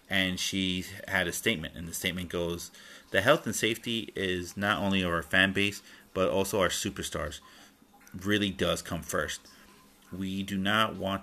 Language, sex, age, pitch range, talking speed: English, male, 30-49, 85-100 Hz, 165 wpm